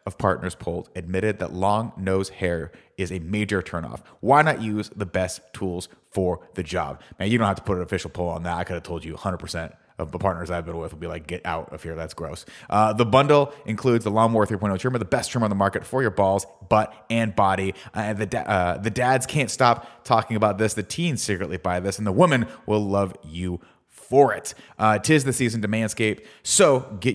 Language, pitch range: English, 95-120 Hz